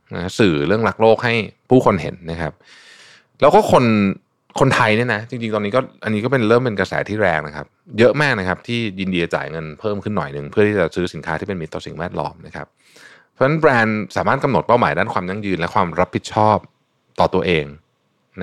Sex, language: male, Thai